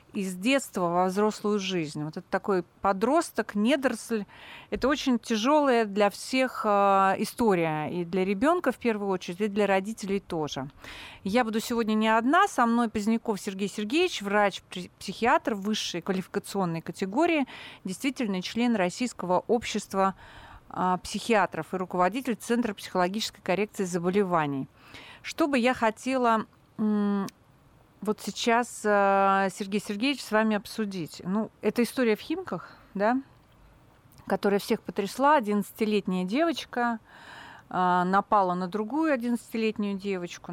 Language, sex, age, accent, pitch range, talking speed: Russian, female, 40-59, native, 190-235 Hz, 115 wpm